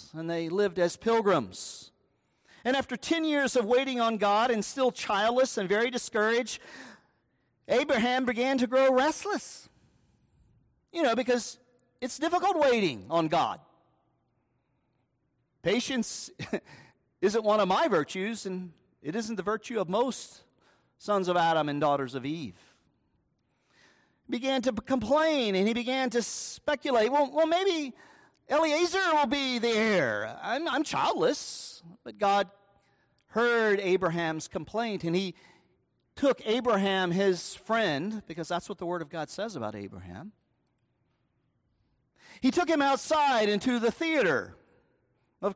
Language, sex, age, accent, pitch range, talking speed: English, male, 40-59, American, 165-250 Hz, 130 wpm